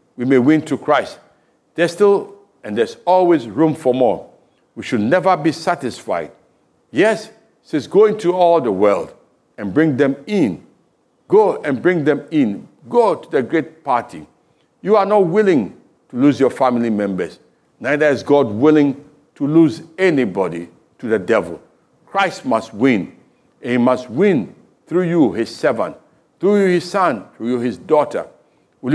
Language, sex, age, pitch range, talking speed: English, male, 60-79, 135-180 Hz, 160 wpm